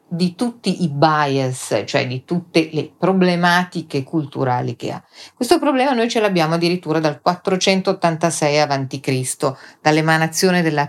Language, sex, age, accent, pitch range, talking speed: Italian, female, 40-59, native, 140-190 Hz, 125 wpm